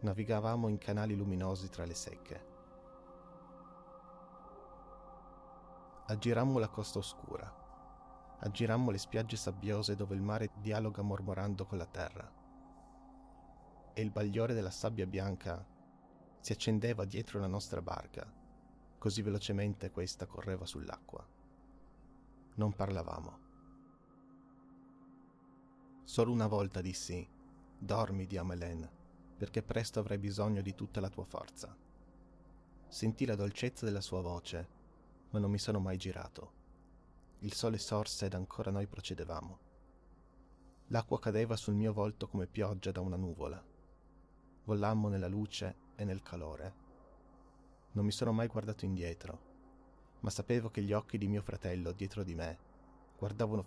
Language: Italian